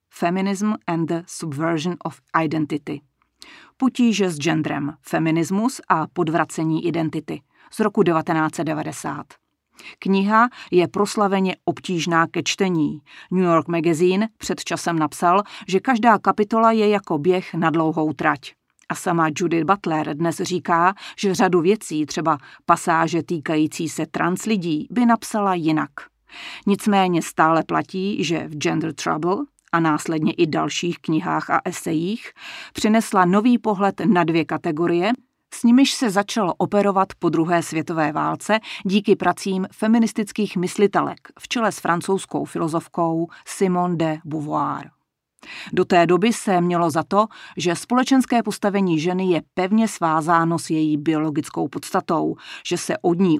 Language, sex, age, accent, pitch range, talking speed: Czech, female, 40-59, native, 165-200 Hz, 135 wpm